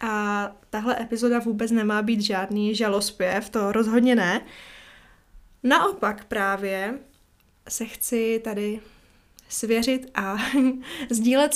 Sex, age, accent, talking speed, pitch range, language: female, 20-39, native, 100 wpm, 210-255 Hz, Czech